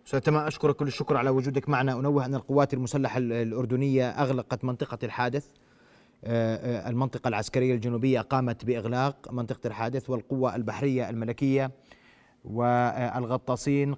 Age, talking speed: 30-49, 110 wpm